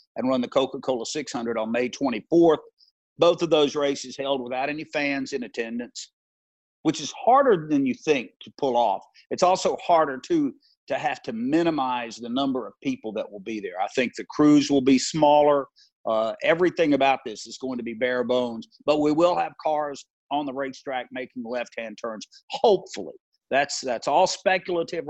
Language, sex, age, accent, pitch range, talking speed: English, male, 50-69, American, 125-160 Hz, 180 wpm